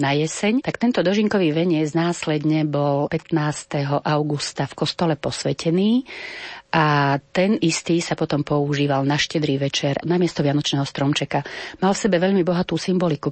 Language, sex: Slovak, female